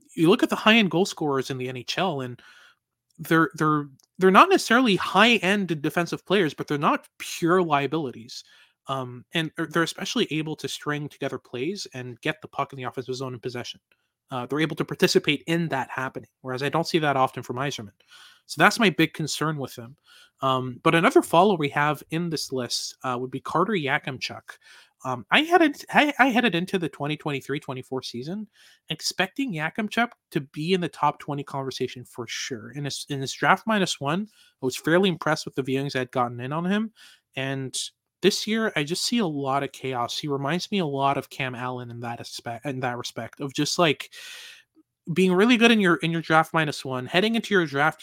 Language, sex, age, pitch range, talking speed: English, male, 20-39, 130-185 Hz, 200 wpm